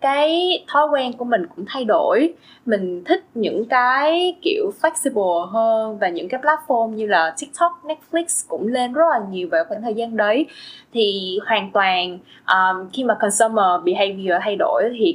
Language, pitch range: Vietnamese, 200-300 Hz